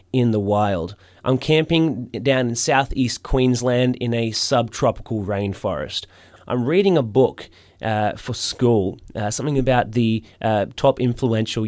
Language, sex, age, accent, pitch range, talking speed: English, male, 20-39, Australian, 100-130 Hz, 140 wpm